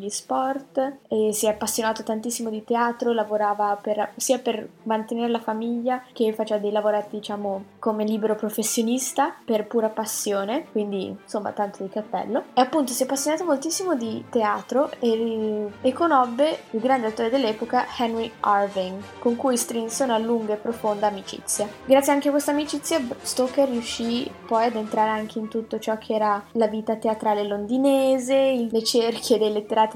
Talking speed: 160 wpm